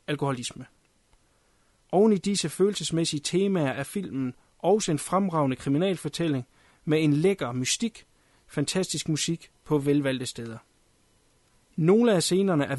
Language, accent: Danish, native